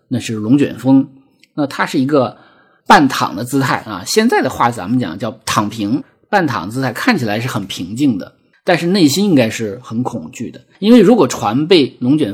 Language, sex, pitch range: Chinese, male, 115-150 Hz